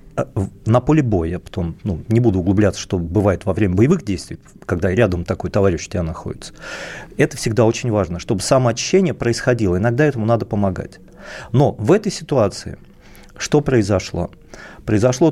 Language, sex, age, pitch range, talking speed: Russian, male, 40-59, 105-140 Hz, 155 wpm